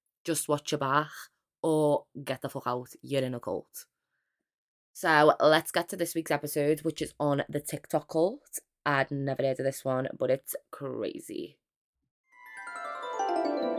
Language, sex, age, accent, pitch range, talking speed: English, female, 20-39, British, 140-170 Hz, 150 wpm